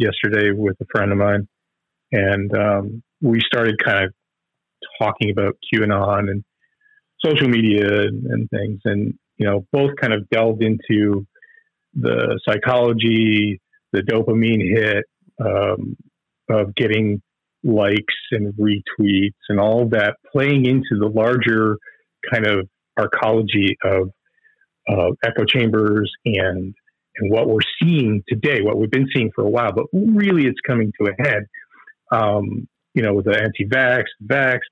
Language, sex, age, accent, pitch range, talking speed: English, male, 40-59, American, 105-130 Hz, 140 wpm